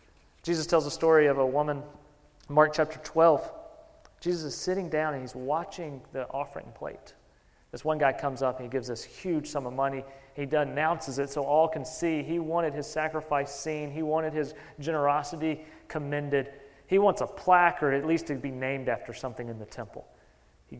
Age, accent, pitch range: 40-59, American, 140-170 Hz